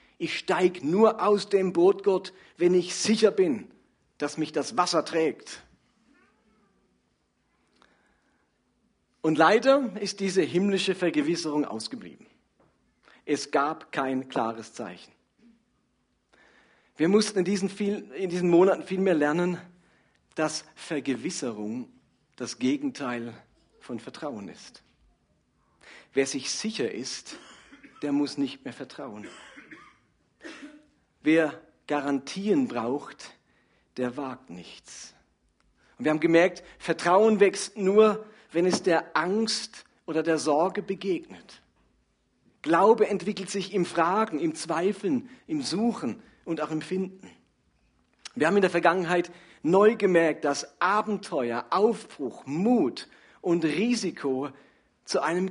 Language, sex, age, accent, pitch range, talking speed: German, male, 40-59, German, 150-205 Hz, 110 wpm